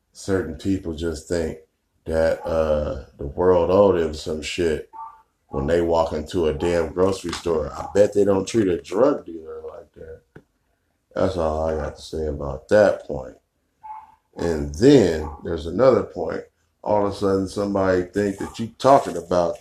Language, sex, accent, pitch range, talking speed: English, male, American, 80-115 Hz, 165 wpm